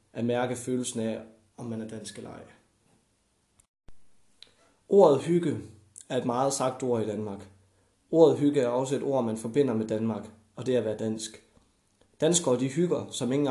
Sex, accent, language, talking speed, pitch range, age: male, native, Danish, 180 wpm, 110-140 Hz, 20-39